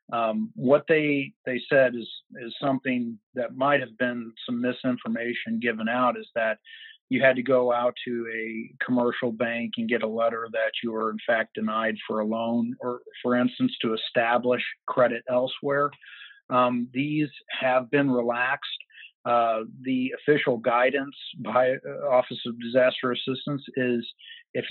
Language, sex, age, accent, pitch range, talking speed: English, male, 50-69, American, 120-140 Hz, 155 wpm